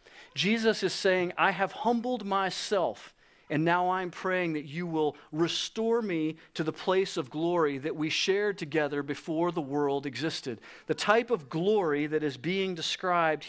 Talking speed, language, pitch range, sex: 165 wpm, English, 155-195 Hz, male